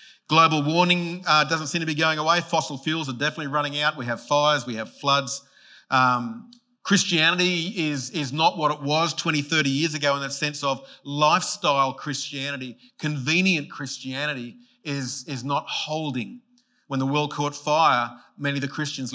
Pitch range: 130-155 Hz